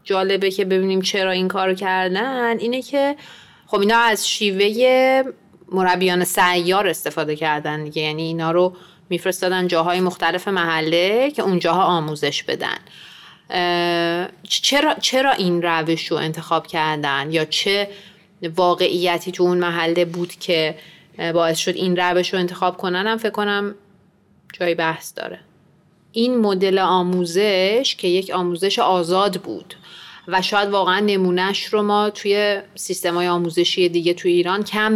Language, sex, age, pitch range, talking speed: Persian, female, 30-49, 165-205 Hz, 130 wpm